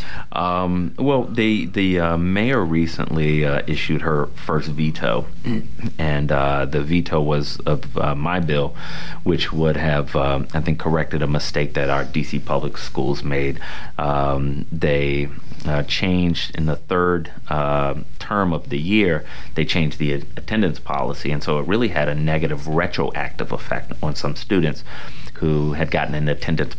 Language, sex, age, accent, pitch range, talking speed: English, male, 30-49, American, 70-80 Hz, 155 wpm